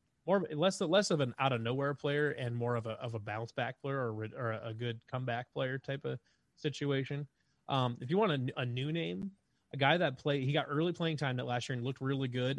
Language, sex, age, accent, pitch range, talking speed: English, male, 20-39, American, 110-130 Hz, 245 wpm